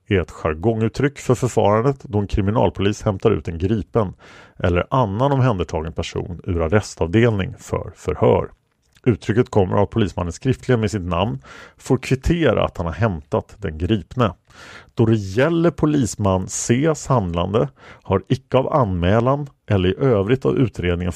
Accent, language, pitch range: Norwegian, Swedish, 90-125 Hz